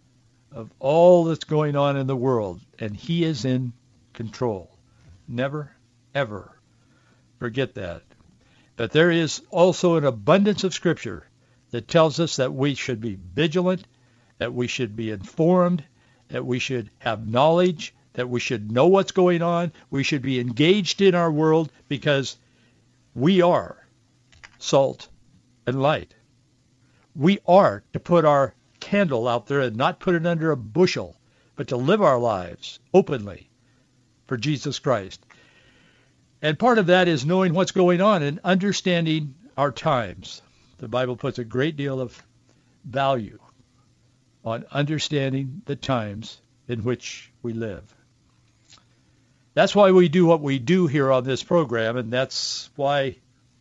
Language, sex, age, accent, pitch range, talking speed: English, male, 60-79, American, 120-160 Hz, 145 wpm